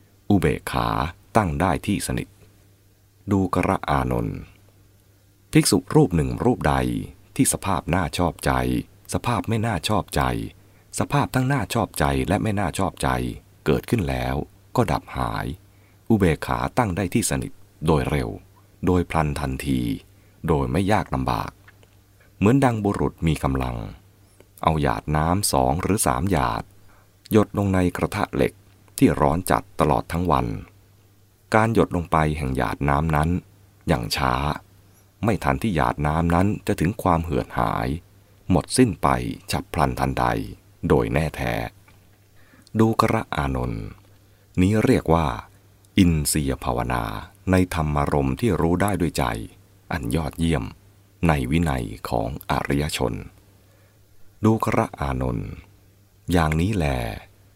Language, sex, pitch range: English, male, 75-100 Hz